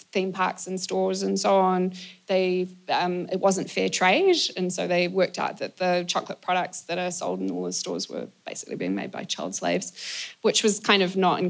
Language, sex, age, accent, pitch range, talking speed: English, female, 20-39, Australian, 180-195 Hz, 220 wpm